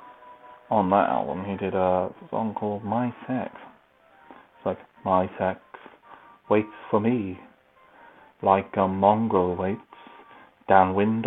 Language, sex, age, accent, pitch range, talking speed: English, male, 30-49, British, 95-115 Hz, 115 wpm